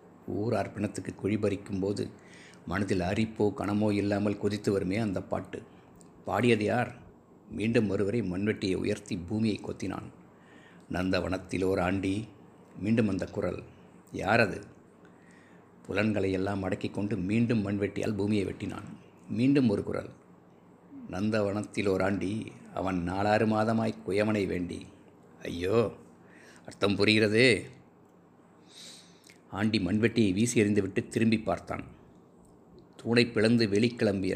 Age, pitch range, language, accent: 50-69, 95-110 Hz, Tamil, native